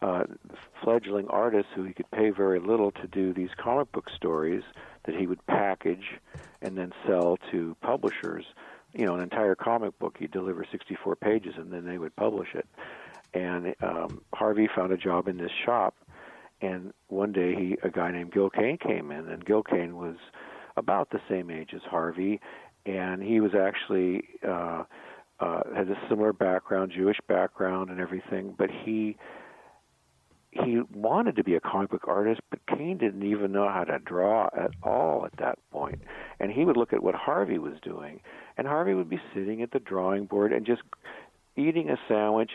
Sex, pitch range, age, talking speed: male, 90-110 Hz, 50-69, 185 wpm